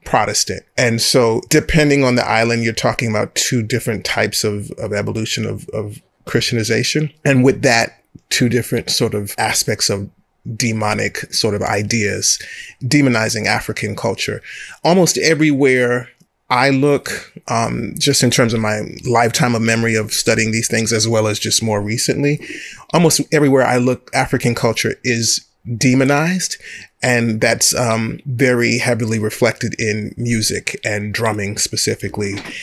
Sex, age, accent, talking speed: male, 30-49, American, 140 wpm